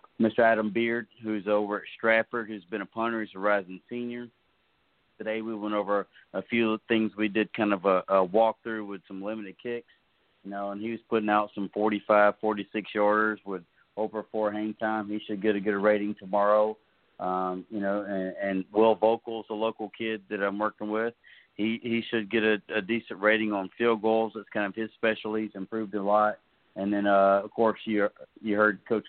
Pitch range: 100-110 Hz